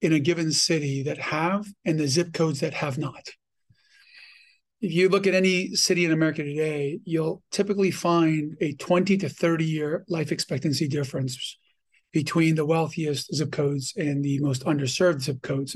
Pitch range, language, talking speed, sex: 155-185 Hz, English, 170 wpm, male